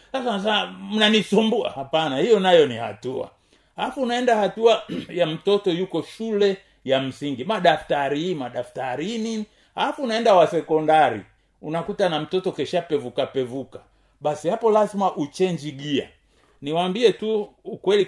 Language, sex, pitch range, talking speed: Swahili, male, 145-220 Hz, 115 wpm